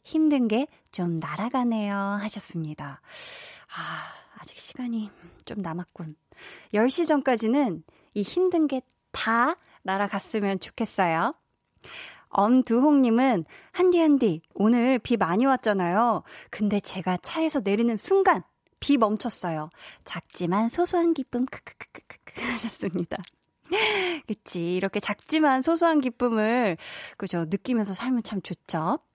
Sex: female